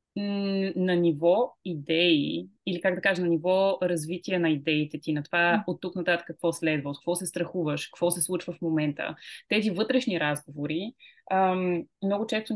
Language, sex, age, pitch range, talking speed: Bulgarian, female, 20-39, 160-185 Hz, 165 wpm